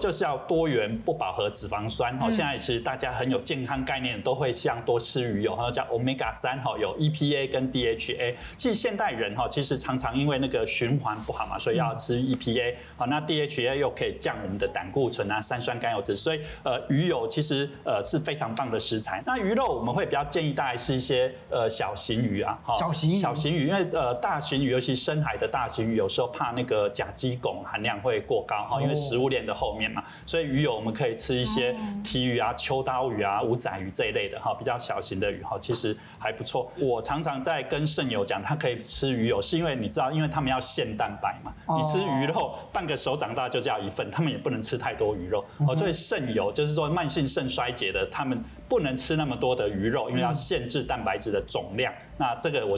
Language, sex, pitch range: Chinese, male, 130-170 Hz